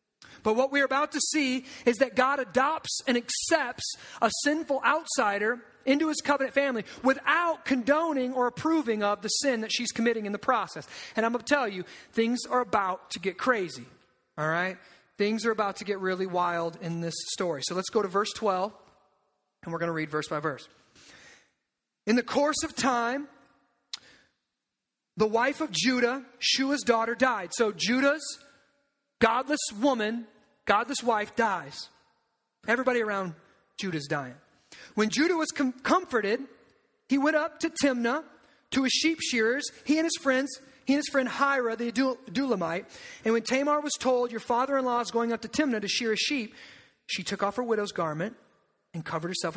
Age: 30-49